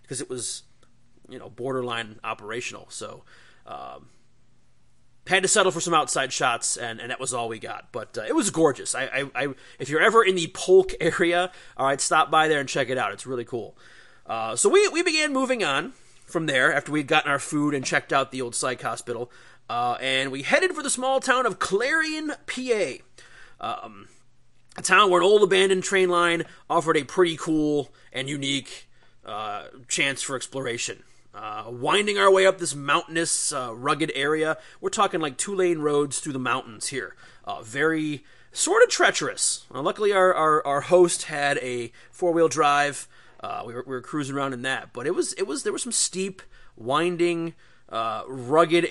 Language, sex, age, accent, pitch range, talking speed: English, male, 30-49, American, 130-180 Hz, 190 wpm